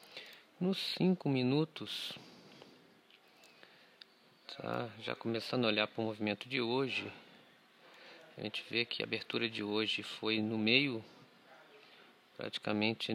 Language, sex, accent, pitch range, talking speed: Portuguese, male, Brazilian, 105-125 Hz, 115 wpm